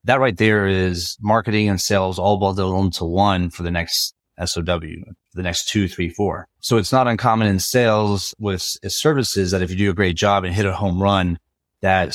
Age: 30-49